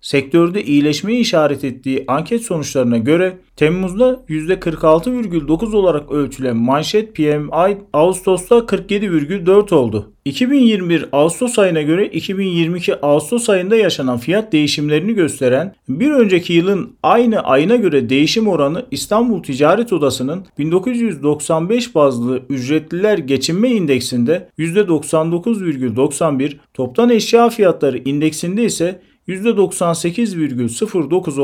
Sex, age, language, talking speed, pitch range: male, 40-59, Turkish, 95 wpm, 140-200 Hz